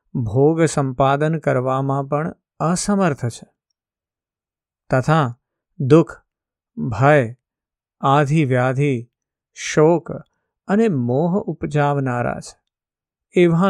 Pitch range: 135-165 Hz